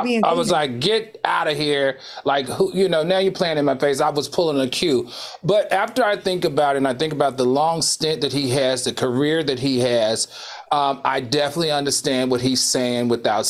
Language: English